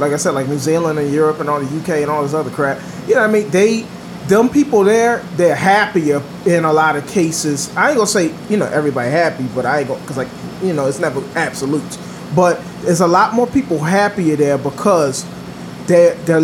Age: 30-49